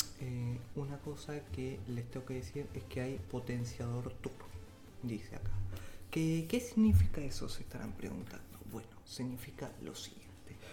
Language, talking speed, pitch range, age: English, 140 wpm, 105-125 Hz, 20-39